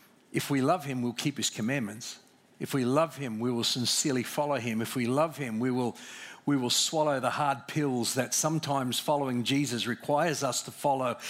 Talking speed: 195 wpm